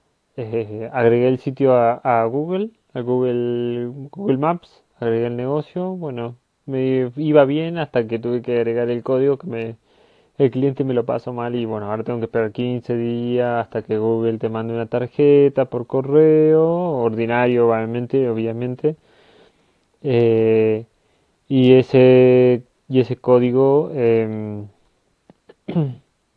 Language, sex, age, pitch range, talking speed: Spanish, male, 20-39, 115-135 Hz, 135 wpm